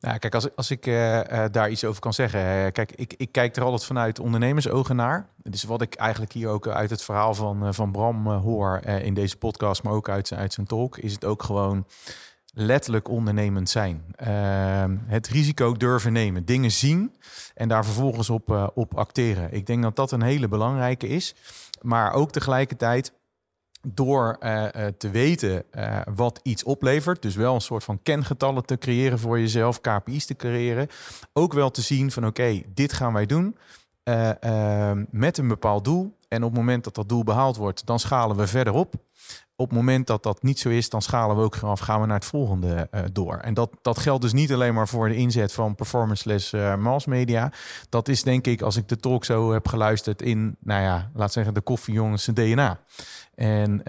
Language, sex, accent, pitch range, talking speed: Dutch, male, Dutch, 105-125 Hz, 210 wpm